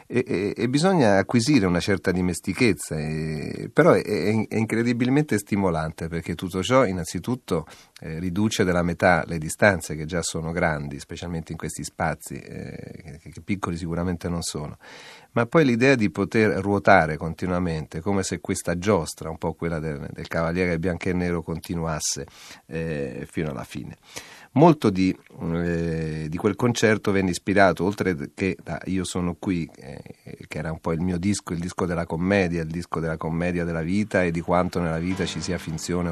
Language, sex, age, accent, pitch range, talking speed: Italian, male, 40-59, native, 85-100 Hz, 170 wpm